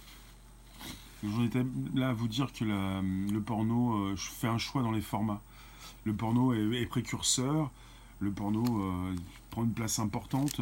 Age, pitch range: 20-39, 100-125 Hz